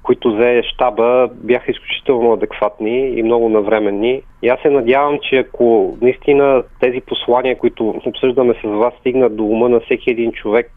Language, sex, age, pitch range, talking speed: Bulgarian, male, 40-59, 110-130 Hz, 160 wpm